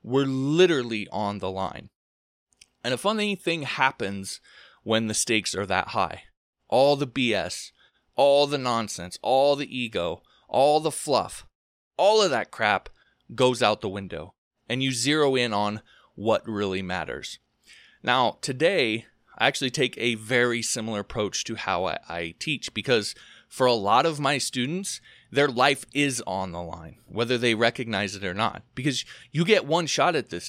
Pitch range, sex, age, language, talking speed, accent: 110-150 Hz, male, 20-39, English, 165 wpm, American